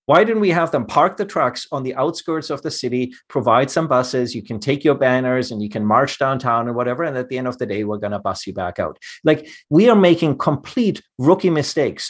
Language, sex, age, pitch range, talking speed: English, male, 30-49, 120-155 Hz, 250 wpm